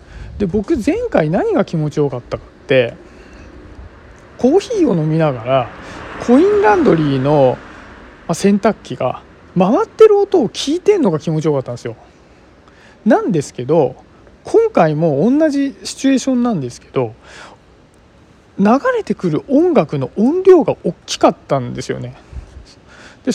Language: Japanese